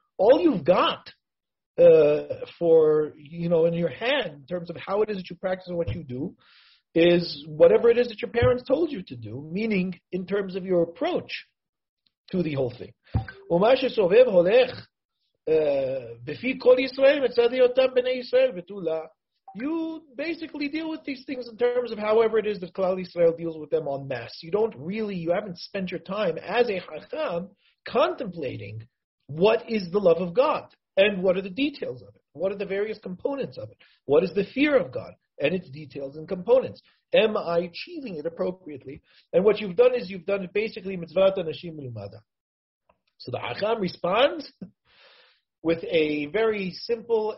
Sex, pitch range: male, 165-245 Hz